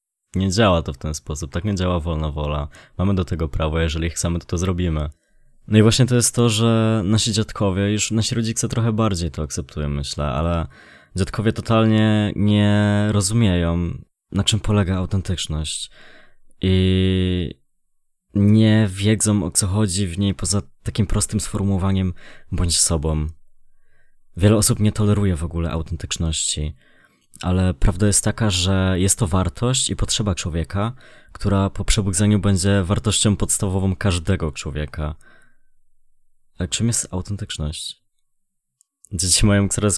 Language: Polish